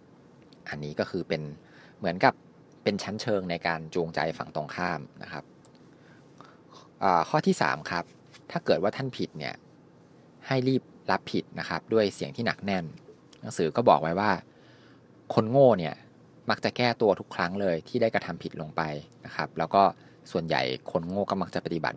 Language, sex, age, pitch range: Thai, male, 20-39, 85-120 Hz